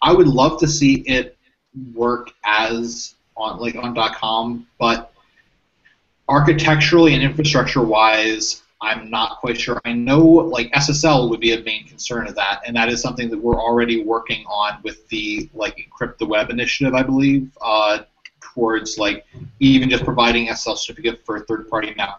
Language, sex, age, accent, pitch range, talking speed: English, male, 20-39, American, 110-130 Hz, 165 wpm